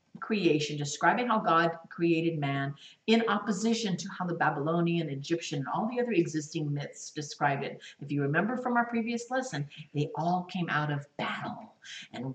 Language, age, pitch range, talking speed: English, 50-69, 155-190 Hz, 170 wpm